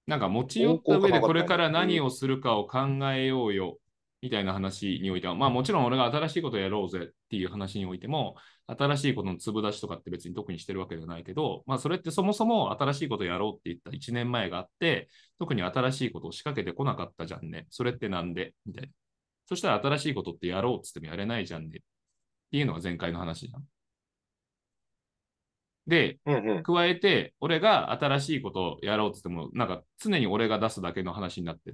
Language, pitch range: Japanese, 90-135 Hz